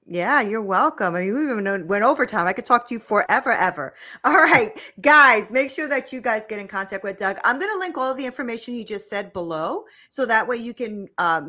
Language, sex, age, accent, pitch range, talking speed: English, female, 40-59, American, 195-260 Hz, 250 wpm